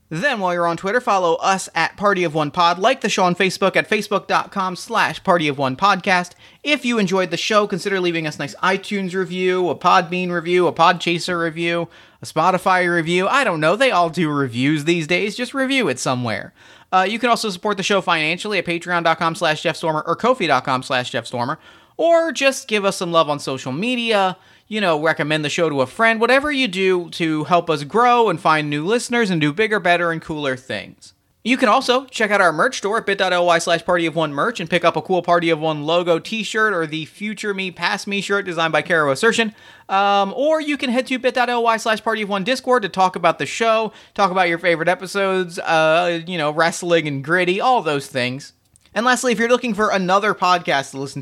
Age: 30-49